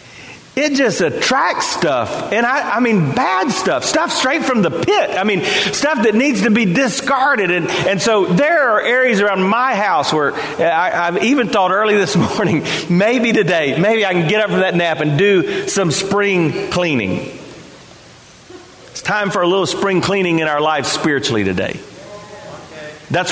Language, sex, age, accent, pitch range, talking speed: English, male, 40-59, American, 165-220 Hz, 175 wpm